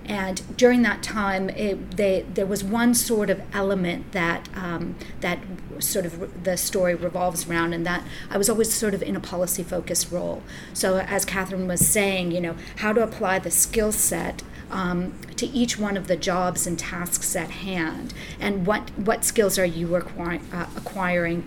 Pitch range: 175-195 Hz